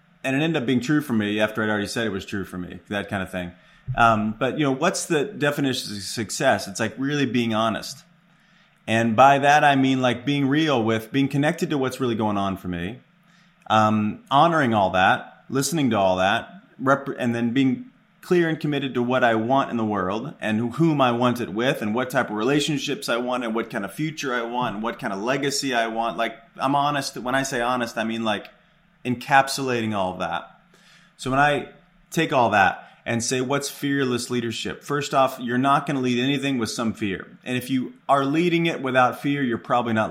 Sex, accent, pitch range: male, American, 115-145 Hz